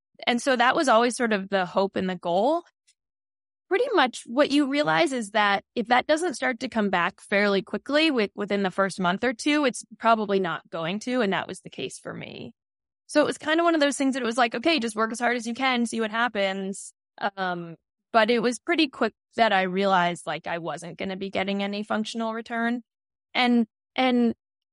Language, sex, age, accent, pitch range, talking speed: English, female, 10-29, American, 190-240 Hz, 225 wpm